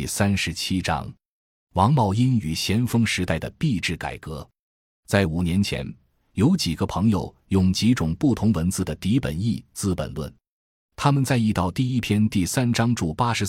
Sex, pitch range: male, 85-115 Hz